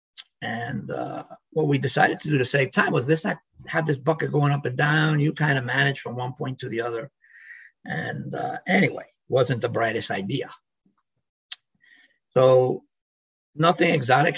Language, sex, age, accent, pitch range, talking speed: English, male, 50-69, American, 115-150 Hz, 165 wpm